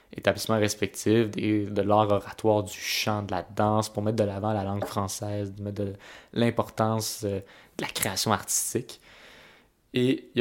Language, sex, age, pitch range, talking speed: French, male, 20-39, 100-115 Hz, 155 wpm